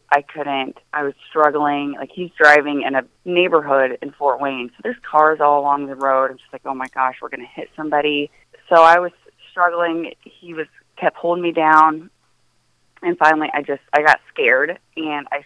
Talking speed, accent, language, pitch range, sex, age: 200 wpm, American, English, 140-160 Hz, female, 20-39